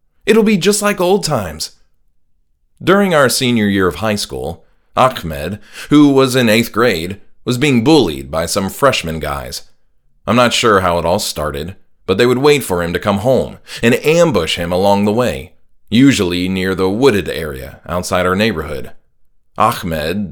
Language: English